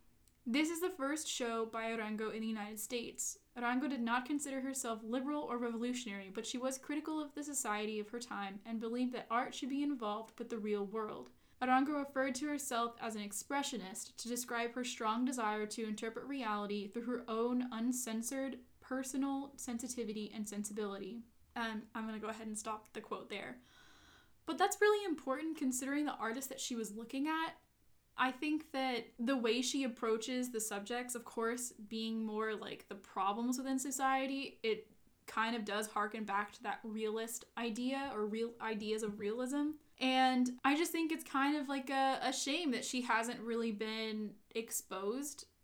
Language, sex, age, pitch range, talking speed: English, female, 10-29, 220-265 Hz, 180 wpm